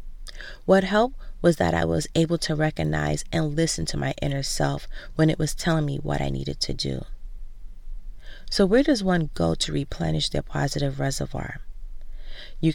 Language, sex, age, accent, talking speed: English, female, 30-49, American, 170 wpm